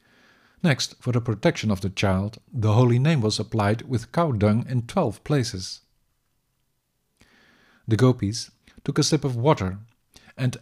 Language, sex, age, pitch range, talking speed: English, male, 50-69, 110-130 Hz, 145 wpm